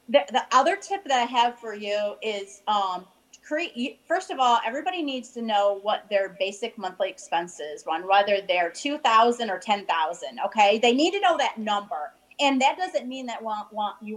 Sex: female